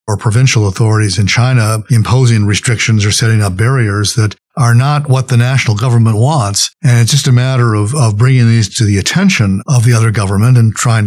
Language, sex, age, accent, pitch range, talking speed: English, male, 50-69, American, 110-135 Hz, 200 wpm